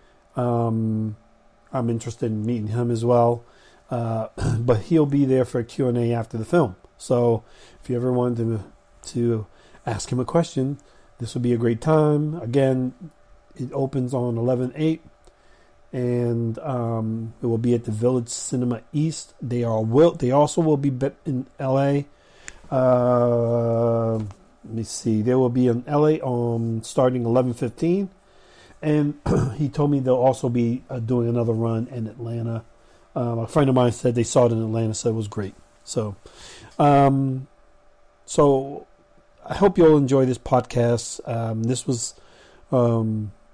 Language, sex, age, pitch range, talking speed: English, male, 40-59, 115-135 Hz, 160 wpm